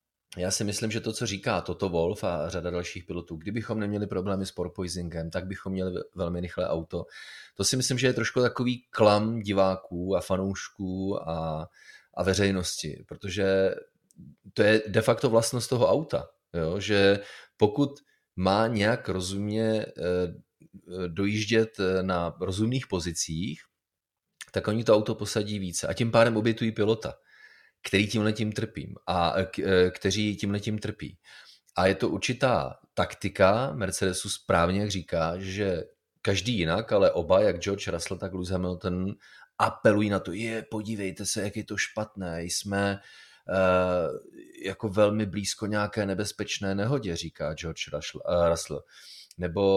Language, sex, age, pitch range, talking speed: Czech, male, 30-49, 90-105 Hz, 145 wpm